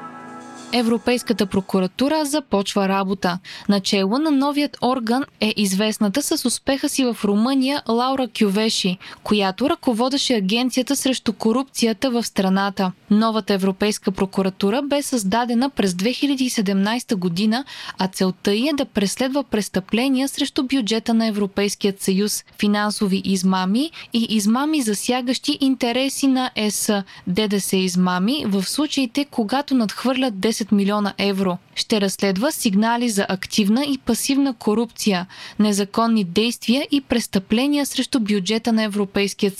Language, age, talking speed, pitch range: Bulgarian, 20-39, 110 wpm, 200-265 Hz